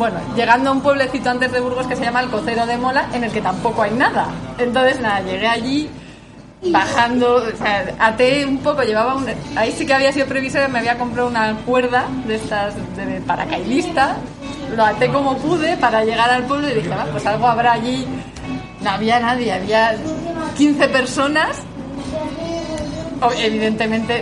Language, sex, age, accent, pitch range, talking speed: Spanish, female, 20-39, Spanish, 225-275 Hz, 175 wpm